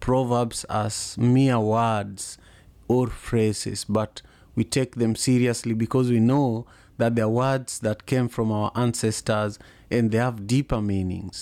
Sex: male